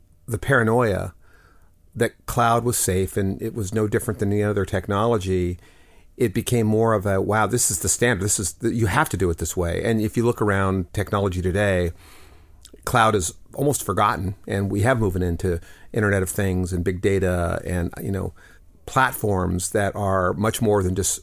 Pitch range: 95-115 Hz